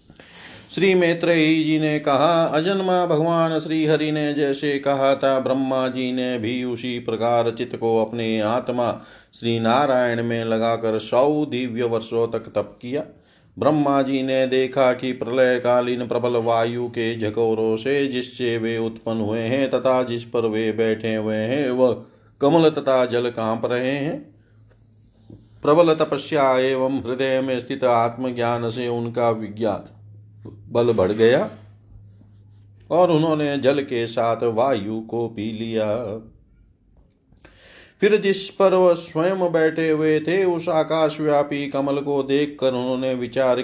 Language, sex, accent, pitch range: Hindi, male, native, 115-140 Hz